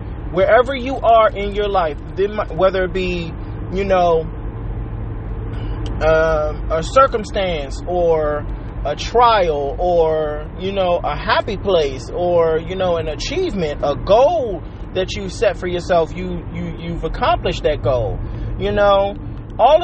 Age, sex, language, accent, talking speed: 30-49, male, English, American, 125 wpm